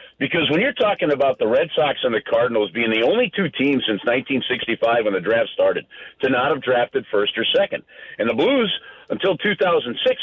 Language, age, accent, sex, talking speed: English, 50-69, American, male, 200 wpm